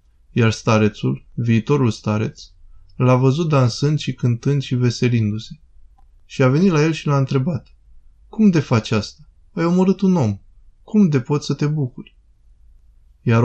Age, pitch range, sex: 20-39, 110-140 Hz, male